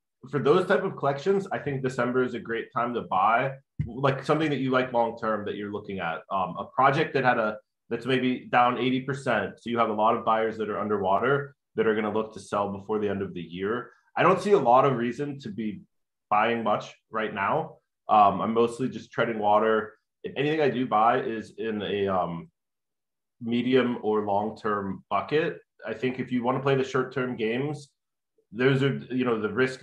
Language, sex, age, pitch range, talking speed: English, male, 20-39, 110-130 Hz, 210 wpm